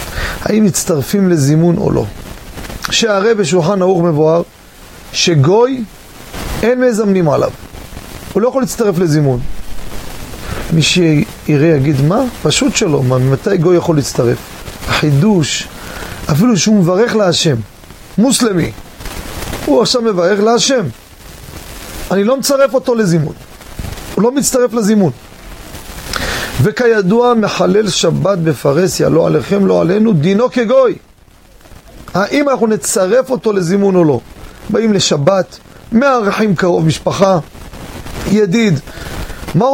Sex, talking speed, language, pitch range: male, 110 wpm, Hebrew, 155-230 Hz